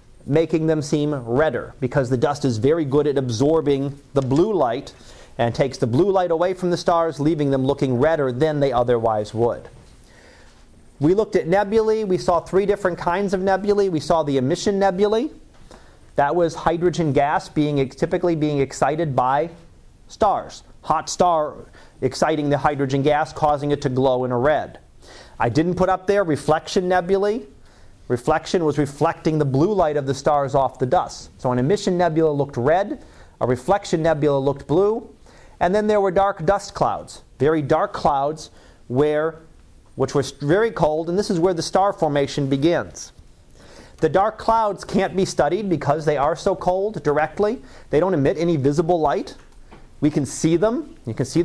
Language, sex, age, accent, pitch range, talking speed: English, male, 40-59, American, 140-185 Hz, 175 wpm